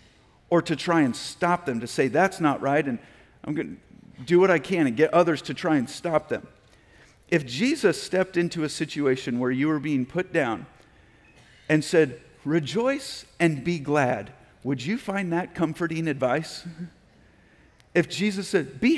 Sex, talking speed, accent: male, 175 wpm, American